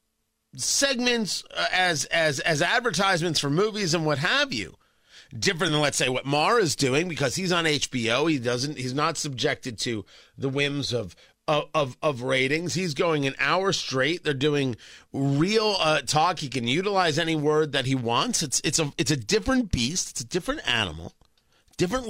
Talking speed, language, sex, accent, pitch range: 180 wpm, English, male, American, 135-190 Hz